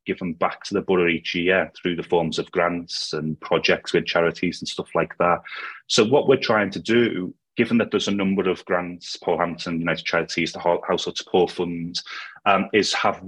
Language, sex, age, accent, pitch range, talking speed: English, male, 30-49, British, 90-105 Hz, 195 wpm